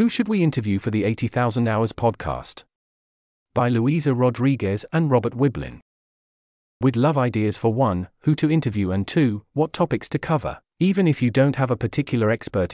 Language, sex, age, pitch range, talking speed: English, male, 40-59, 110-145 Hz, 175 wpm